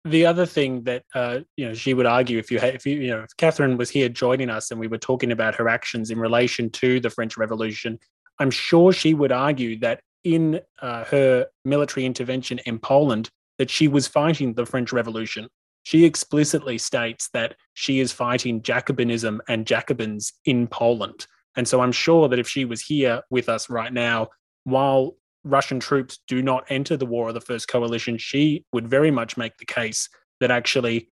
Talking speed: 195 wpm